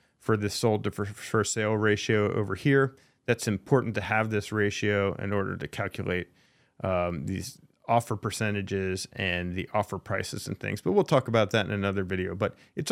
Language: English